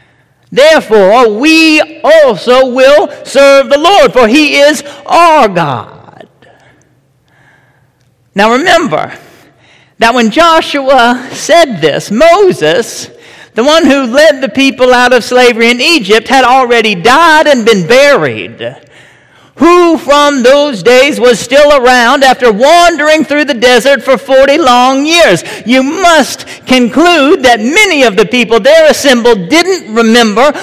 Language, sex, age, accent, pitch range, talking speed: English, male, 50-69, American, 230-300 Hz, 125 wpm